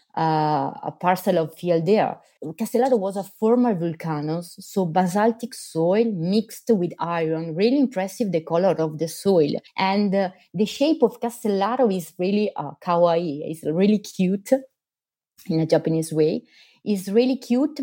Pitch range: 165-215 Hz